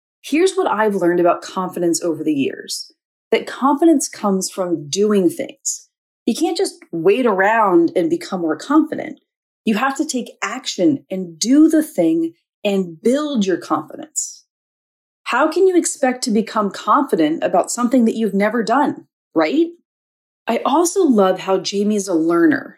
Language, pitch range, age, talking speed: English, 190-310 Hz, 30-49, 155 wpm